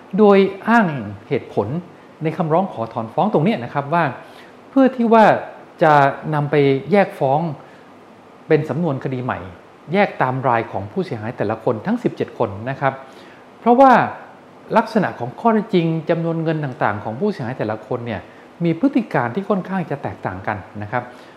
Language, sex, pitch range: Thai, male, 120-185 Hz